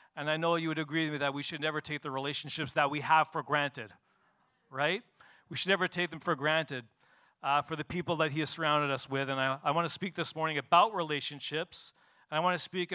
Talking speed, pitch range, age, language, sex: 245 wpm, 145-185 Hz, 40-59, English, male